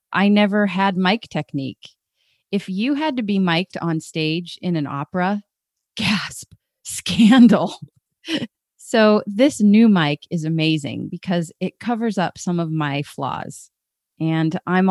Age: 30-49